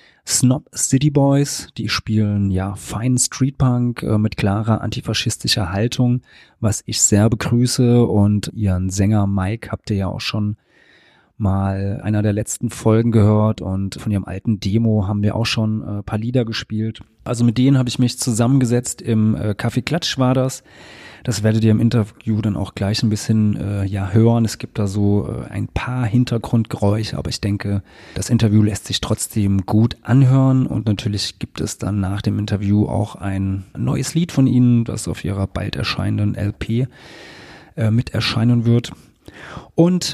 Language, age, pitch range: German, 30-49, 105-125 Hz